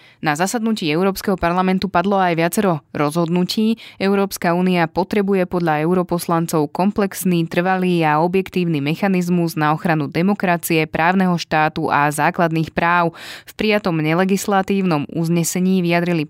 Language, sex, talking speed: Slovak, female, 115 wpm